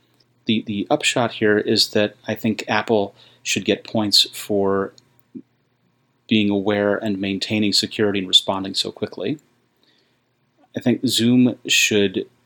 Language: English